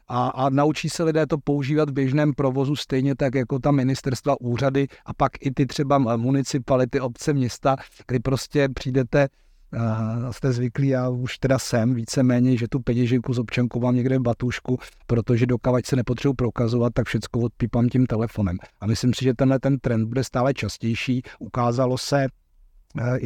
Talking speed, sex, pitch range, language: 175 wpm, male, 115-130 Hz, Czech